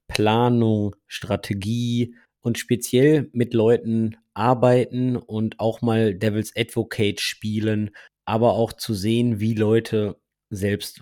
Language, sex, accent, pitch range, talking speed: German, male, German, 105-130 Hz, 110 wpm